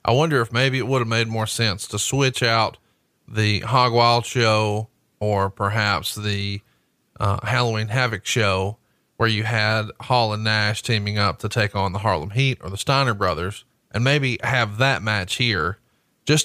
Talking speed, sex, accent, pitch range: 180 wpm, male, American, 110-135 Hz